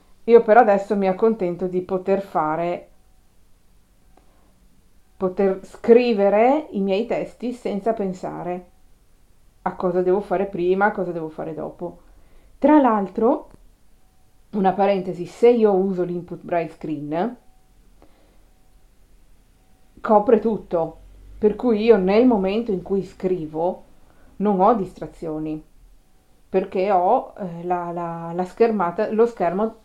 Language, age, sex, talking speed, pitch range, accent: Italian, 40-59, female, 110 wpm, 175-215 Hz, native